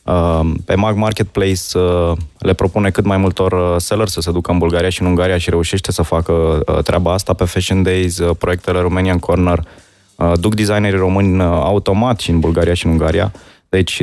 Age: 20-39